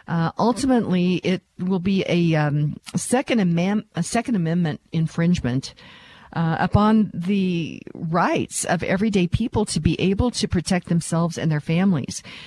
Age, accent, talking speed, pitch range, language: 50-69, American, 140 wpm, 155-190 Hz, English